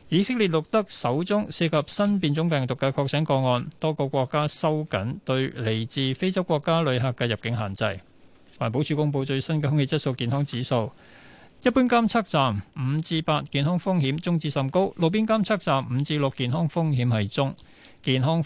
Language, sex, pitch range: Chinese, male, 130-175 Hz